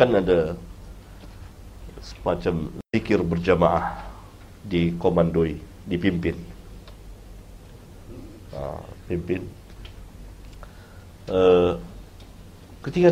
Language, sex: Malay, male